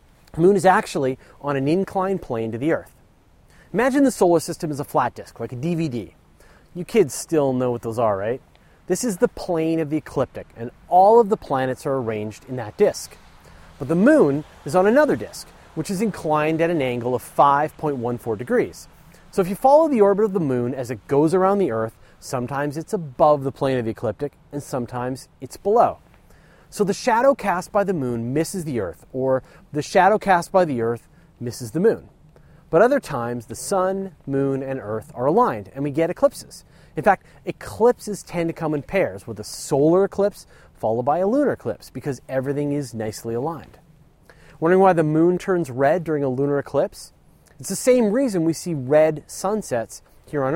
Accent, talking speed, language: American, 195 wpm, English